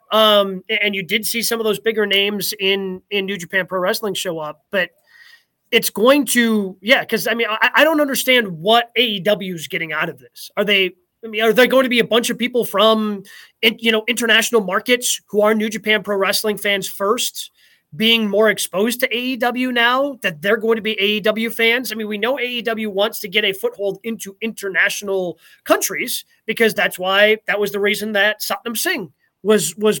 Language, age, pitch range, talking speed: English, 30-49, 190-230 Hz, 205 wpm